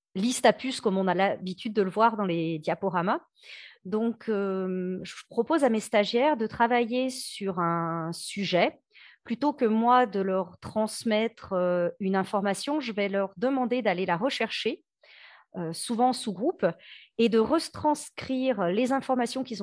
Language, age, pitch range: French, 40-59, 195-255 Hz